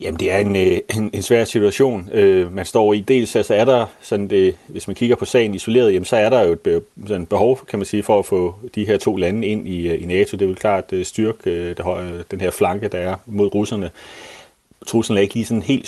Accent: native